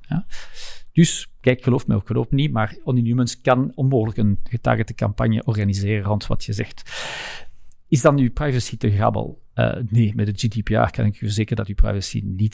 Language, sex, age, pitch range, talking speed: Dutch, male, 50-69, 110-130 Hz, 190 wpm